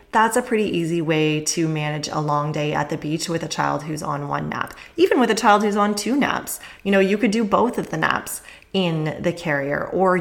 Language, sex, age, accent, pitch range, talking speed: English, female, 20-39, American, 160-205 Hz, 240 wpm